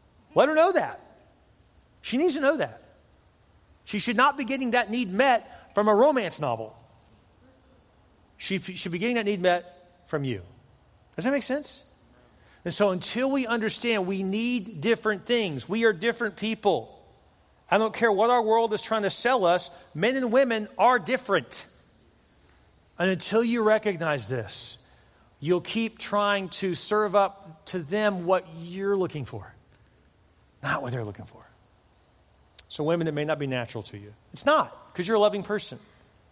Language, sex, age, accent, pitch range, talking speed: English, male, 40-59, American, 140-210 Hz, 165 wpm